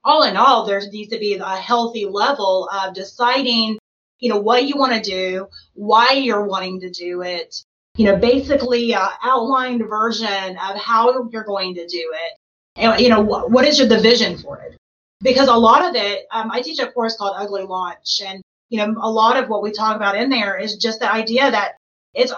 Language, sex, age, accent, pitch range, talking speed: English, female, 30-49, American, 200-240 Hz, 215 wpm